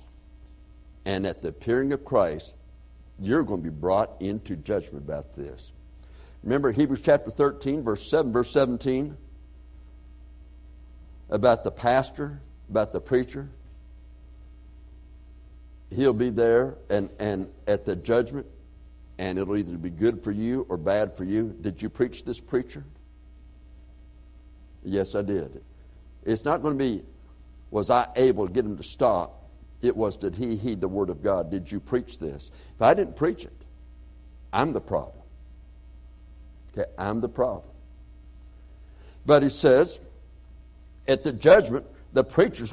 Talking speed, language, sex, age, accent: 145 wpm, English, male, 60-79, American